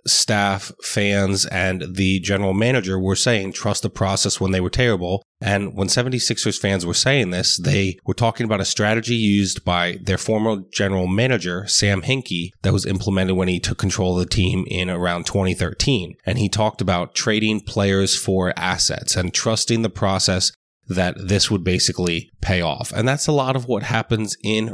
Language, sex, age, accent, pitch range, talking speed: English, male, 30-49, American, 95-110 Hz, 180 wpm